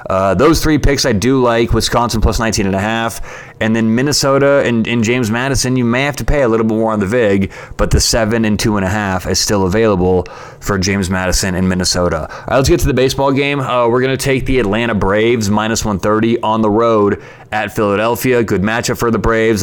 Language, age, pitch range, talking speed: English, 20-39, 105-125 Hz, 220 wpm